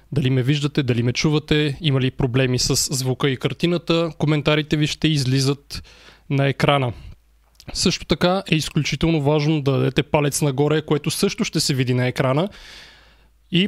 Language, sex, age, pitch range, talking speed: Bulgarian, male, 20-39, 145-170 Hz, 160 wpm